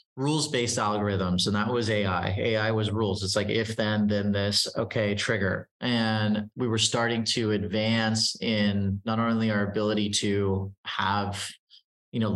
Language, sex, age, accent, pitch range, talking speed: English, male, 30-49, American, 100-115 Hz, 155 wpm